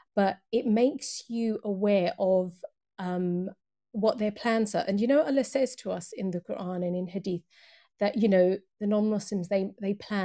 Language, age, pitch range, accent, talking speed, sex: English, 40-59, 190-235 Hz, British, 185 wpm, female